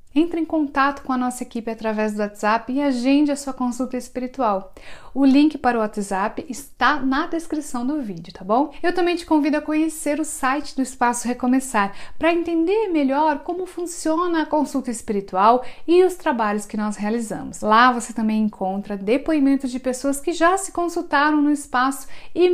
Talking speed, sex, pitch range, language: 180 wpm, female, 225-295 Hz, Portuguese